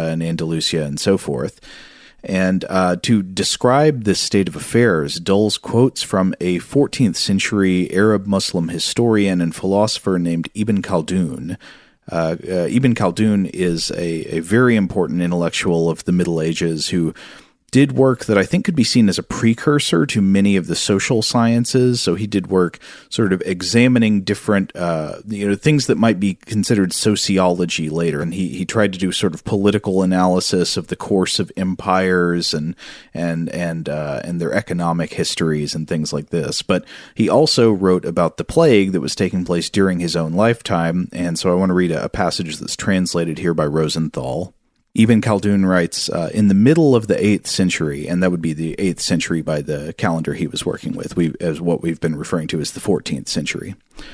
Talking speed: 185 wpm